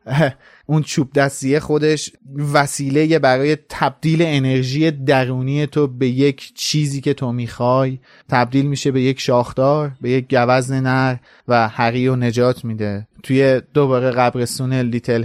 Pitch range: 120-135 Hz